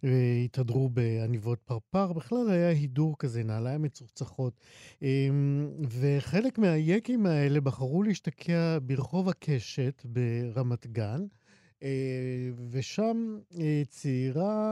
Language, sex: Hebrew, male